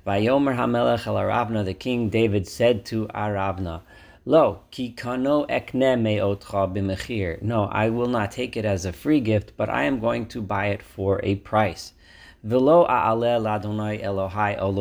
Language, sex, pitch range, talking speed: English, male, 95-115 Hz, 120 wpm